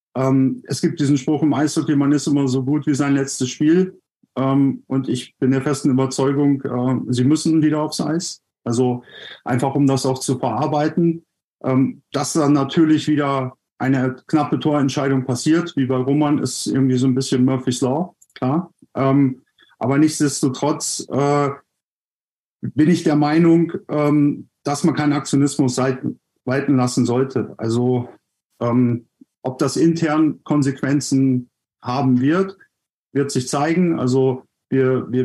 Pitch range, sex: 130-155 Hz, male